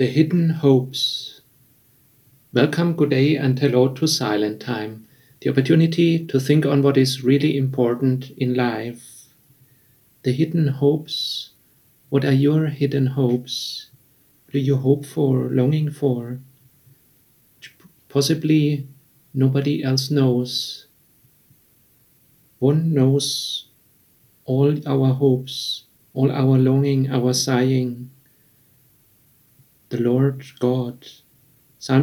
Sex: male